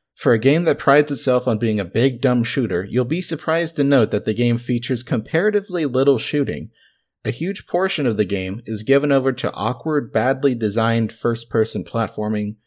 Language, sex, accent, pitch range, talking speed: English, male, American, 105-140 Hz, 185 wpm